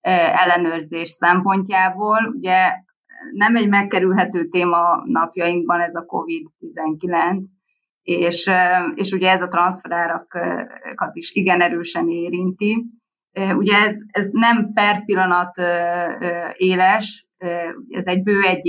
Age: 20-39